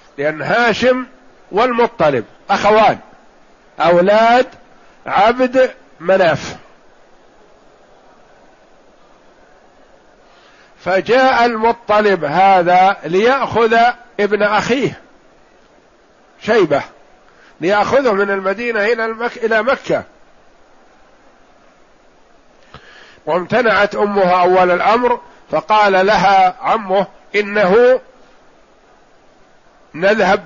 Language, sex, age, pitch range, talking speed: Arabic, male, 50-69, 185-230 Hz, 55 wpm